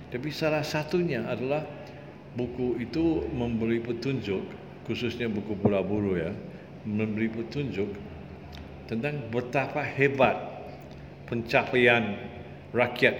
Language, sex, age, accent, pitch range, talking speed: Indonesian, male, 50-69, Malaysian, 95-125 Hz, 85 wpm